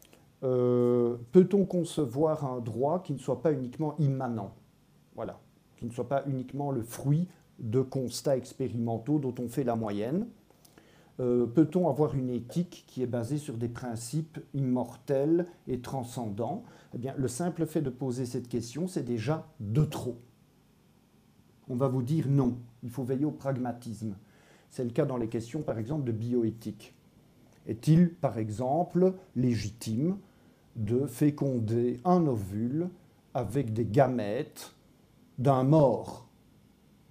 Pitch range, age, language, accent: 120-150 Hz, 40-59, French, French